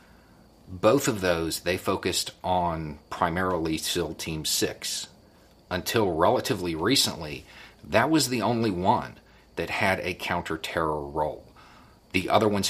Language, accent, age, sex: English, American, 40-59, male